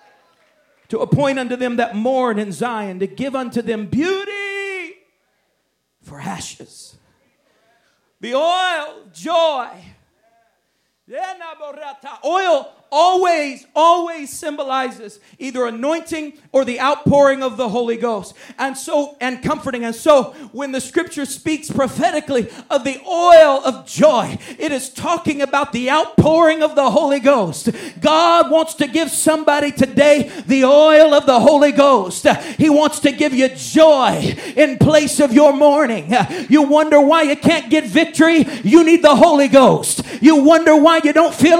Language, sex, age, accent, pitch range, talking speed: English, male, 40-59, American, 260-320 Hz, 140 wpm